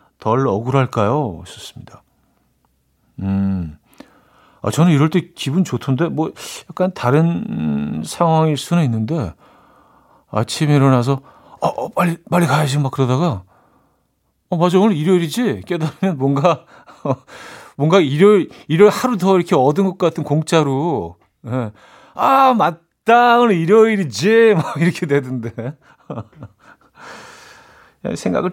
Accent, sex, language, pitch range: native, male, Korean, 120-175 Hz